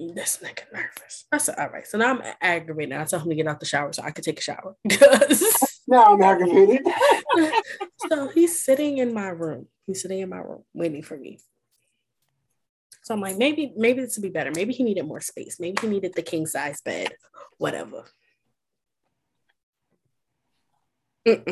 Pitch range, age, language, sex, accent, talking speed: 150-195 Hz, 20-39, English, female, American, 185 wpm